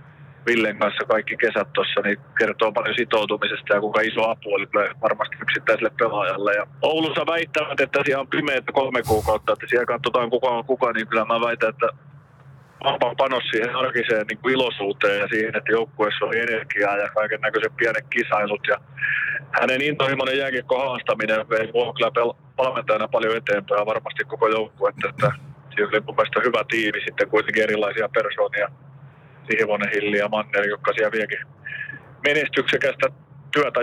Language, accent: Finnish, native